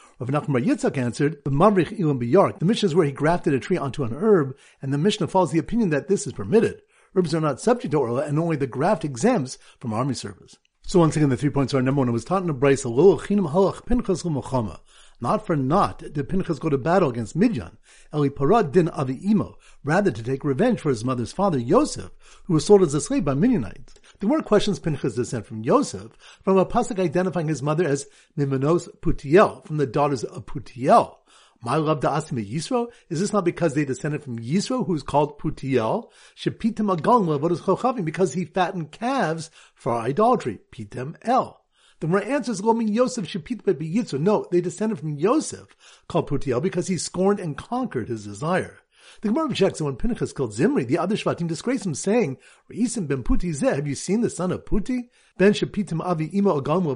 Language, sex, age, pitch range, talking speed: English, male, 50-69, 140-200 Hz, 195 wpm